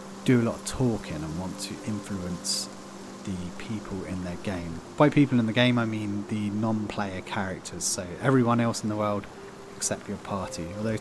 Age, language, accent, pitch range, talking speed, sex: 30-49, English, British, 95-125 Hz, 185 wpm, male